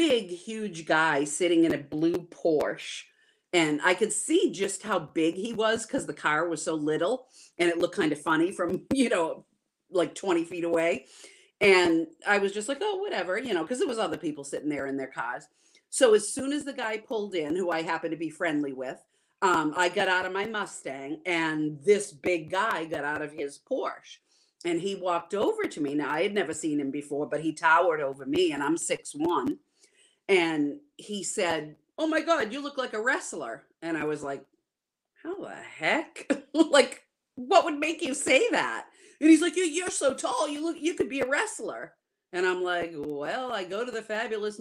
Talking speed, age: 210 wpm, 40-59